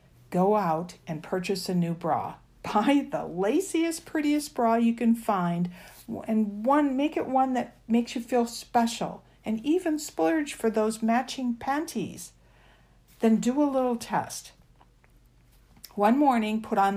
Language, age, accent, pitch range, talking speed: English, 60-79, American, 165-240 Hz, 145 wpm